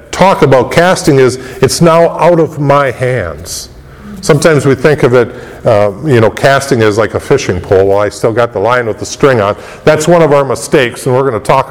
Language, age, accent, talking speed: English, 50-69, American, 225 wpm